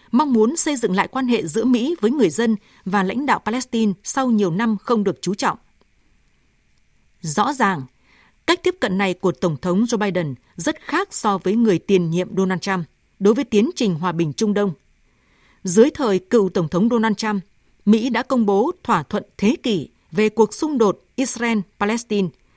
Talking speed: 190 wpm